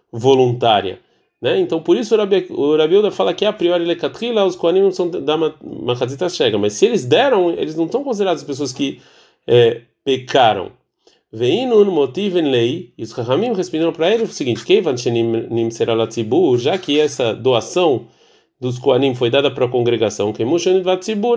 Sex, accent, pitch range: male, Brazilian, 125-175 Hz